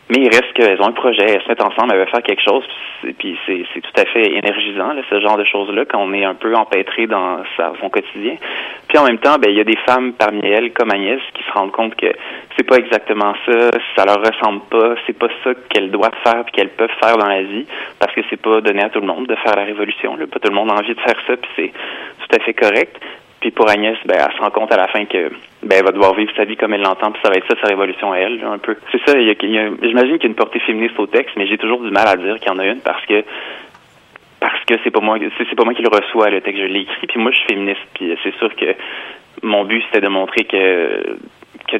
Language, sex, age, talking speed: French, male, 20-39, 300 wpm